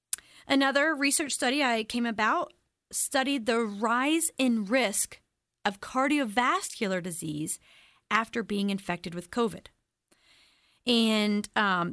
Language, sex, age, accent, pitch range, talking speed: English, female, 30-49, American, 210-270 Hz, 105 wpm